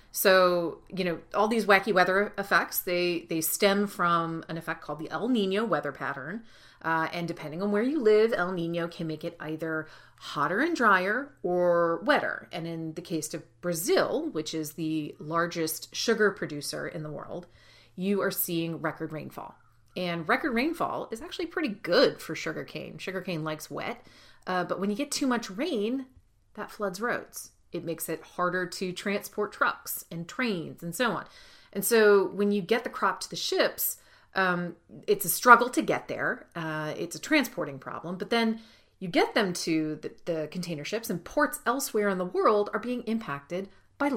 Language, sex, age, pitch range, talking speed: English, female, 30-49, 170-230 Hz, 185 wpm